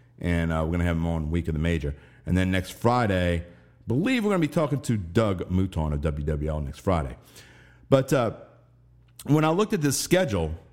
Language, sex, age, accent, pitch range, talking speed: English, male, 50-69, American, 90-130 Hz, 215 wpm